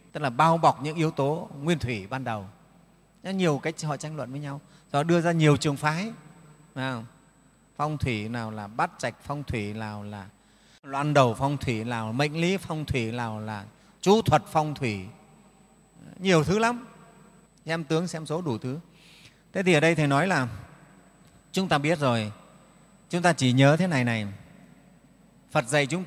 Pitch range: 135-180 Hz